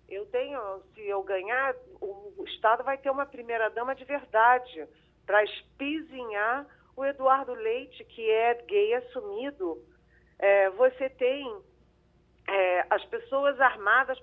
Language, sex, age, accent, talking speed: Portuguese, female, 40-59, Brazilian, 115 wpm